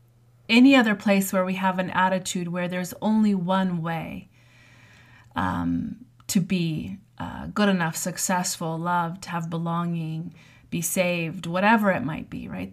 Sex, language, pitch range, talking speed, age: female, English, 170-205 Hz, 140 wpm, 30-49